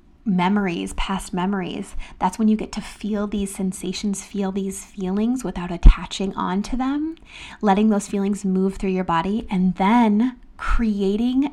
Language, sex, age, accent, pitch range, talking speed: English, female, 20-39, American, 190-225 Hz, 150 wpm